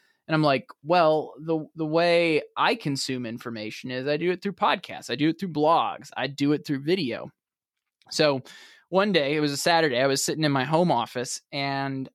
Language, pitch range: English, 135-175 Hz